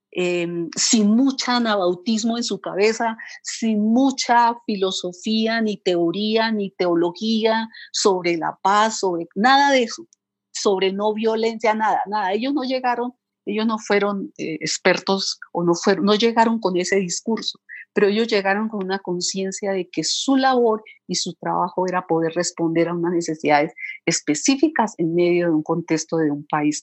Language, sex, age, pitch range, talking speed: Spanish, female, 40-59, 175-230 Hz, 155 wpm